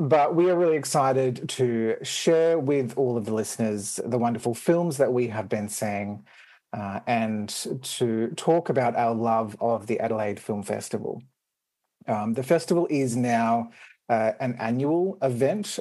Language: English